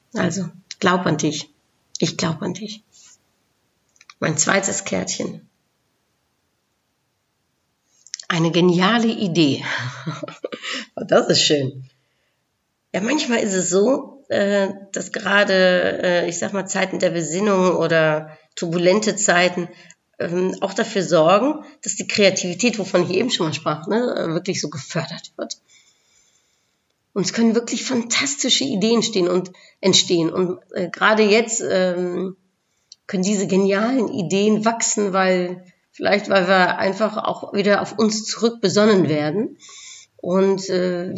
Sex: female